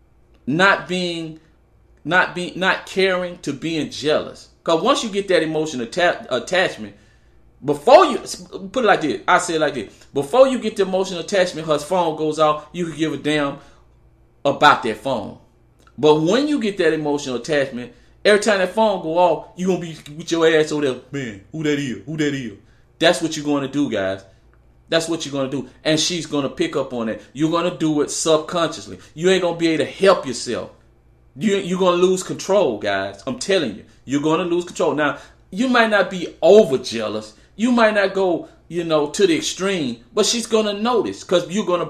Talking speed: 215 wpm